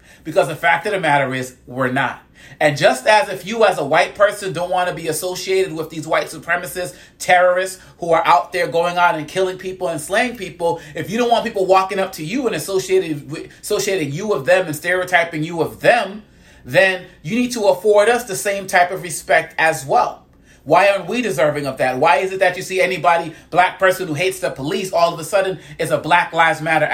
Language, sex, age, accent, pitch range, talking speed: English, male, 30-49, American, 160-195 Hz, 225 wpm